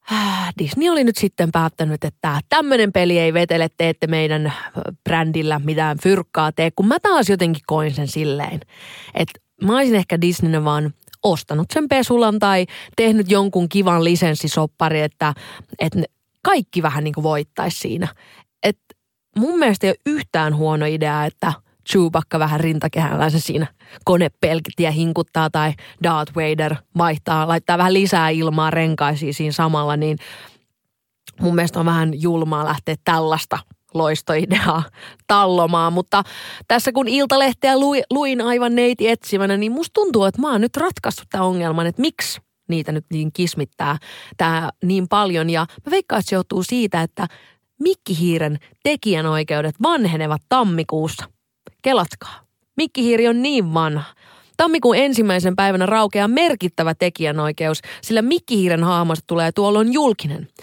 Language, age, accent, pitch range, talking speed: Finnish, 20-39, native, 155-210 Hz, 135 wpm